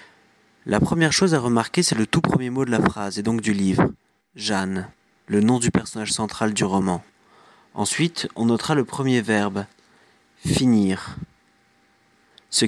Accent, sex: French, male